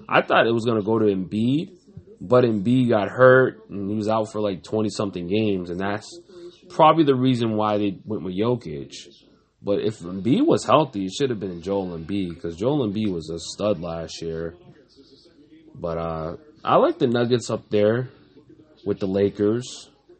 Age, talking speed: 20-39, 180 wpm